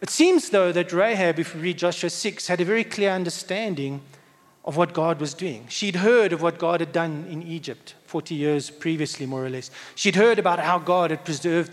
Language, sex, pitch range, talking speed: English, male, 150-185 Hz, 215 wpm